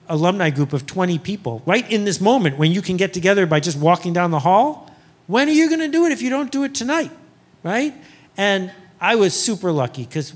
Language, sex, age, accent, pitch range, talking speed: English, male, 50-69, American, 135-185 Hz, 230 wpm